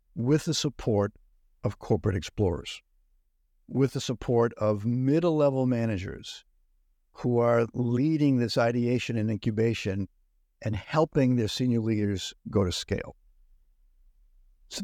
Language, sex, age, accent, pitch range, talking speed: English, male, 60-79, American, 80-125 Hz, 115 wpm